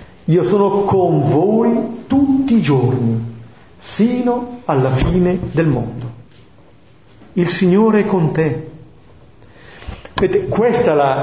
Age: 40-59